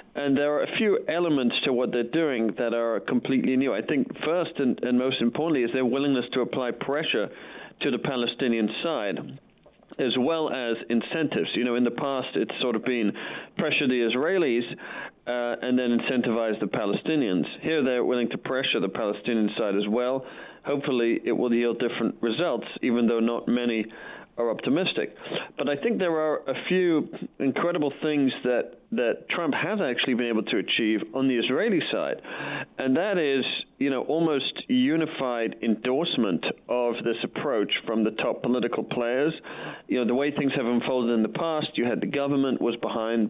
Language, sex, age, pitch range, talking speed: English, male, 40-59, 115-135 Hz, 180 wpm